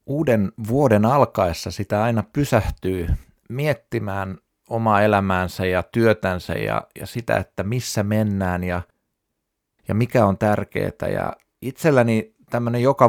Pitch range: 95-120 Hz